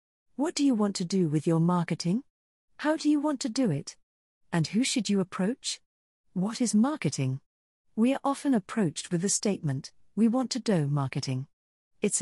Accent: British